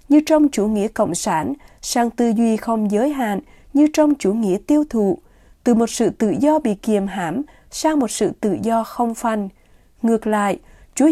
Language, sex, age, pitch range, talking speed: Vietnamese, female, 20-39, 205-270 Hz, 195 wpm